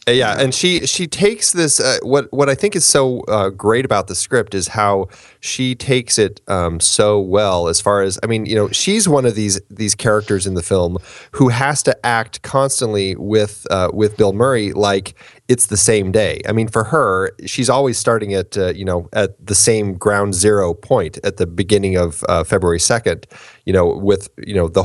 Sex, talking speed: male, 210 wpm